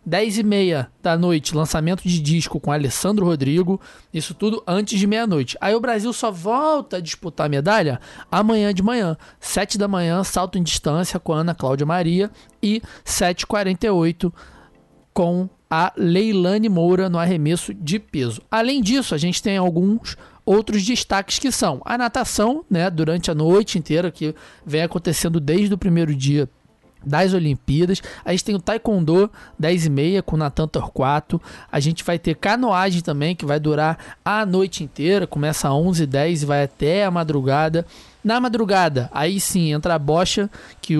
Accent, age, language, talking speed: Brazilian, 20-39, Portuguese, 160 wpm